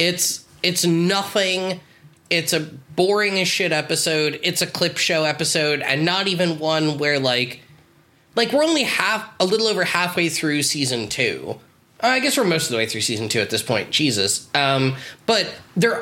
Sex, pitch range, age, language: male, 135-180 Hz, 20-39, English